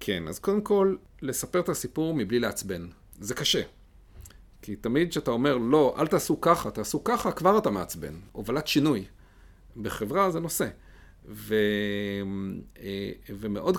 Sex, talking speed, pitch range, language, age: male, 135 wpm, 90-120 Hz, Hebrew, 40-59